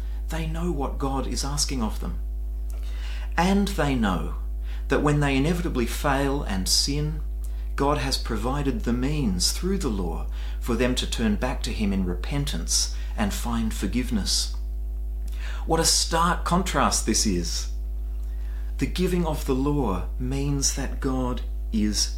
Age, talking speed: 40-59, 145 wpm